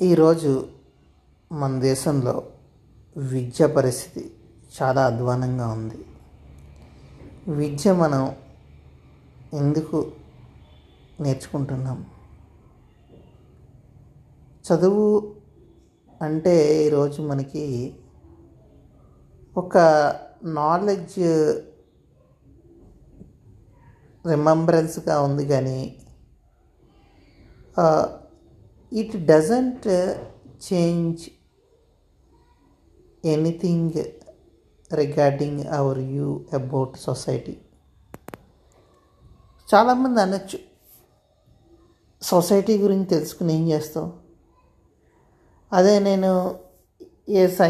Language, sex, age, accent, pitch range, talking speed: English, male, 30-49, Indian, 130-170 Hz, 40 wpm